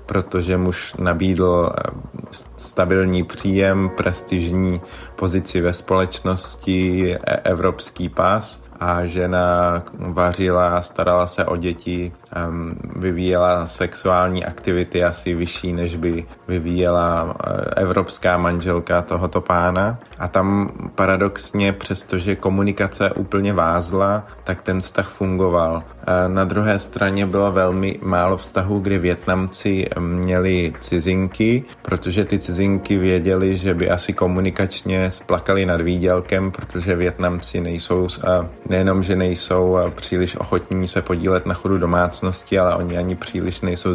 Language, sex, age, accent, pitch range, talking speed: Czech, male, 30-49, native, 90-95 Hz, 110 wpm